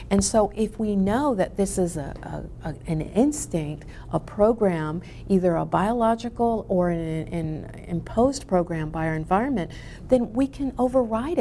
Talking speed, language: 160 wpm, English